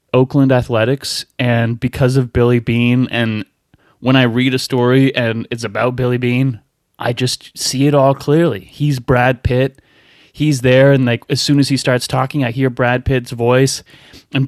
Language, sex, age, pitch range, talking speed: English, male, 30-49, 125-135 Hz, 180 wpm